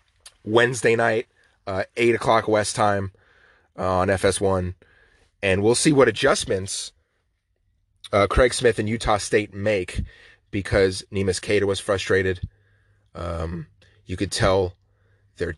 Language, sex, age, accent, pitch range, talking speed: English, male, 30-49, American, 95-105 Hz, 120 wpm